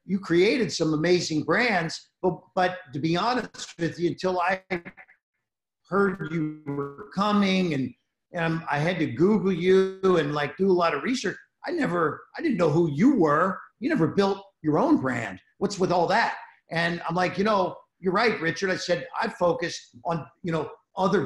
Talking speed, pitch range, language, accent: 185 wpm, 155-195 Hz, English, American